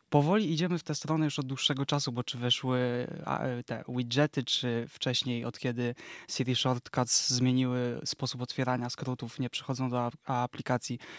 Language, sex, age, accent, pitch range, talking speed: Polish, male, 20-39, native, 125-145 Hz, 150 wpm